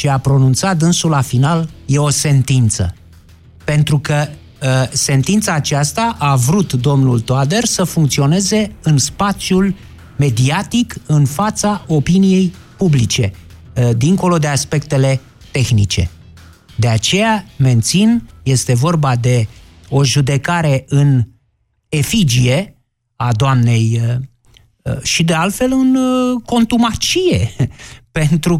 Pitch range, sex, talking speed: 130-200 Hz, male, 110 wpm